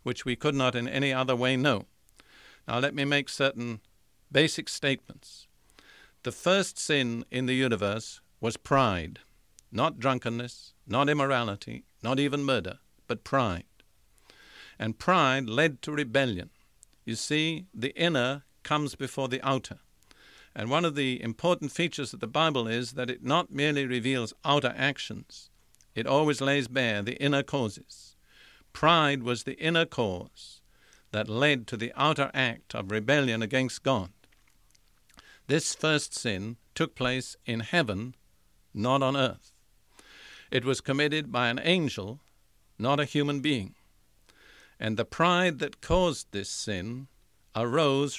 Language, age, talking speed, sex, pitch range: English, 50-69, 140 wpm, male, 115-145 Hz